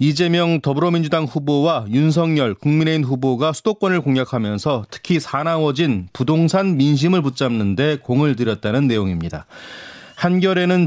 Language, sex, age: Korean, male, 30-49